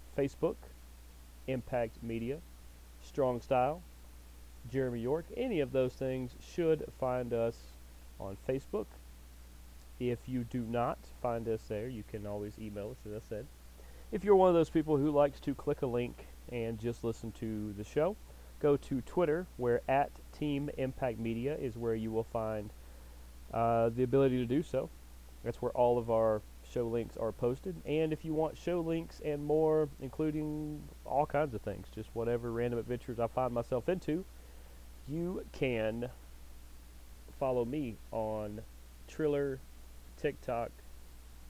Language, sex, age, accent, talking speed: English, male, 30-49, American, 150 wpm